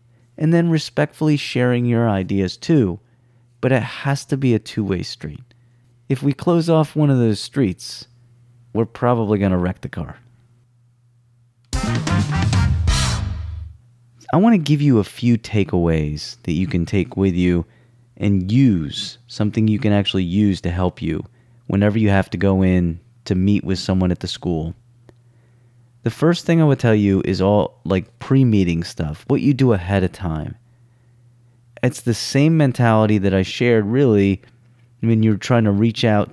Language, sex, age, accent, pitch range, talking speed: English, male, 30-49, American, 95-120 Hz, 165 wpm